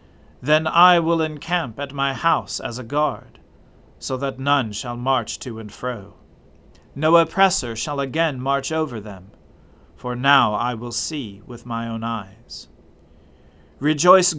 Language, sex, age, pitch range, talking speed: English, male, 40-59, 115-155 Hz, 145 wpm